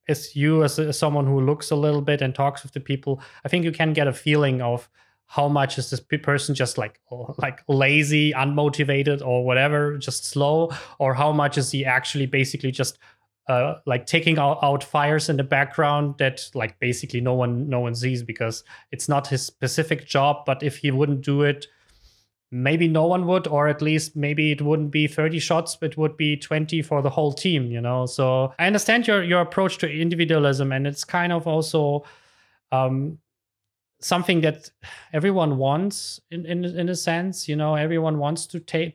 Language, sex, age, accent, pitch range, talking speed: English, male, 20-39, German, 135-160 Hz, 195 wpm